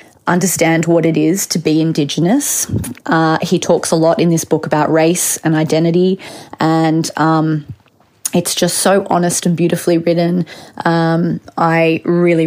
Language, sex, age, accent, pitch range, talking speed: English, female, 30-49, Australian, 160-175 Hz, 150 wpm